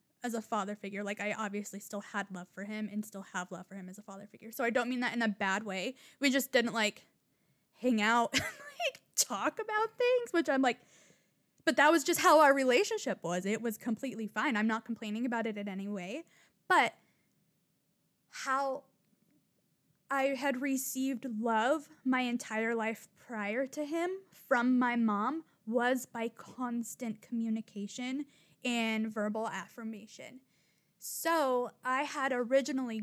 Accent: American